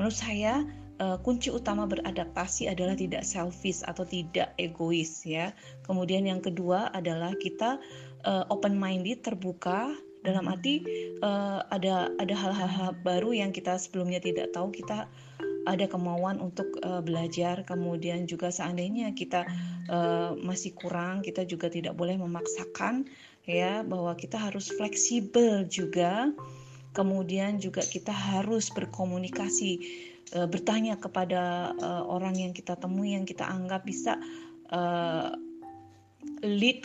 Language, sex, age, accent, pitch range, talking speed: Indonesian, female, 20-39, native, 170-195 Hz, 120 wpm